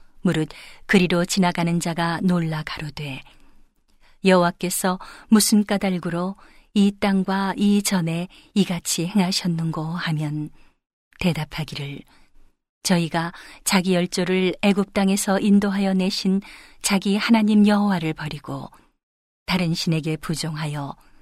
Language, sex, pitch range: Korean, female, 175-205 Hz